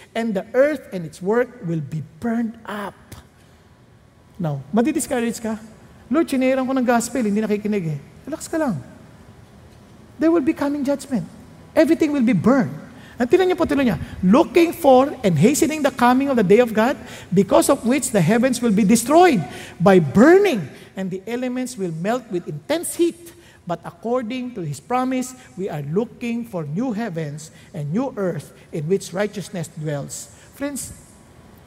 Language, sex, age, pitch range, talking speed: English, male, 50-69, 180-285 Hz, 155 wpm